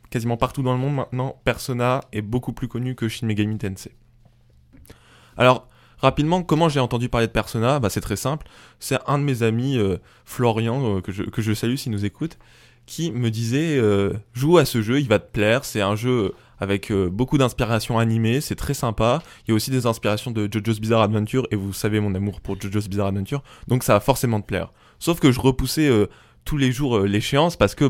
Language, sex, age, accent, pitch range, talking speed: French, male, 20-39, French, 110-135 Hz, 220 wpm